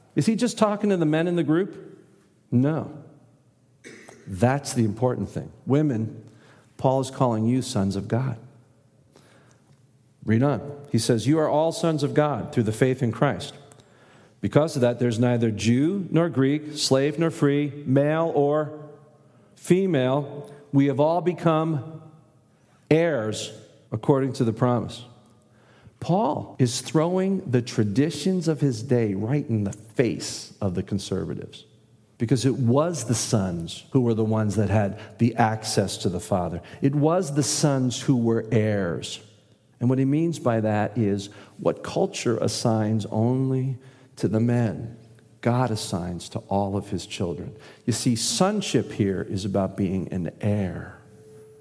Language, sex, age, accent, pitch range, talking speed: English, male, 50-69, American, 110-145 Hz, 150 wpm